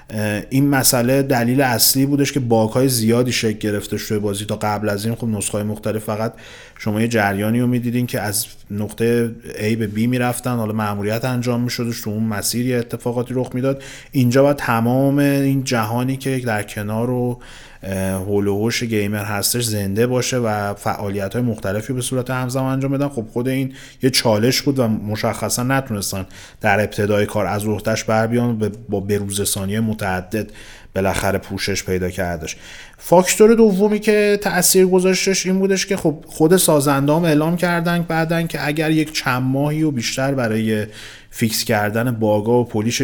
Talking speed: 165 wpm